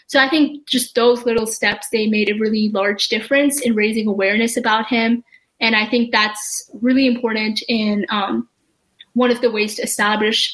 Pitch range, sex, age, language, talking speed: 215-250 Hz, female, 10-29, English, 180 wpm